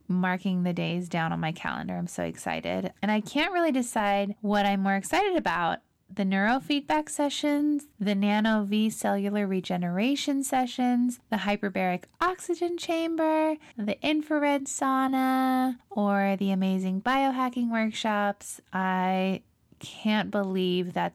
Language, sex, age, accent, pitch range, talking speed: English, female, 20-39, American, 190-250 Hz, 130 wpm